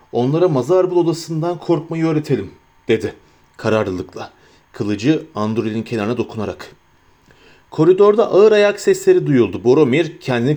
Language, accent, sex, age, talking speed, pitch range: Turkish, native, male, 40-59, 100 wpm, 125-180 Hz